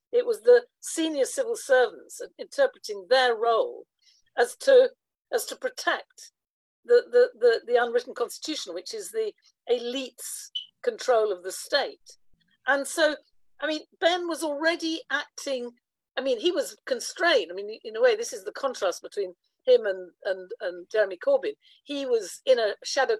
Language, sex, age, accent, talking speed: English, female, 50-69, British, 160 wpm